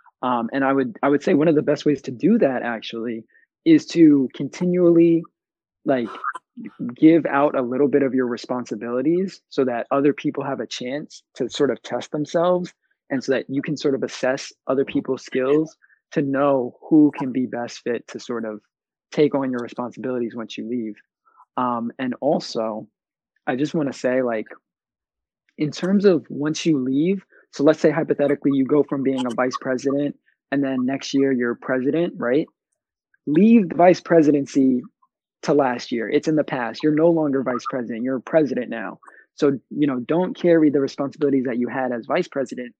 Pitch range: 130-155 Hz